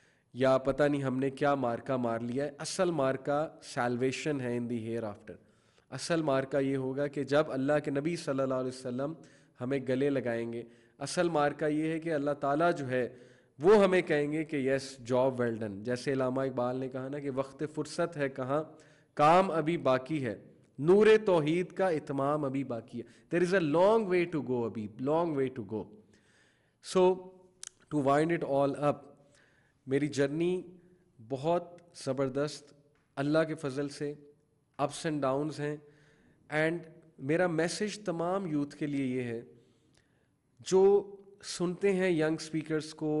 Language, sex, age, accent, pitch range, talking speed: English, male, 20-39, Indian, 130-160 Hz, 155 wpm